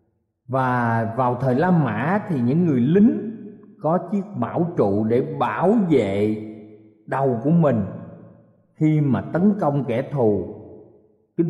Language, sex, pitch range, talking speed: Vietnamese, male, 125-205 Hz, 135 wpm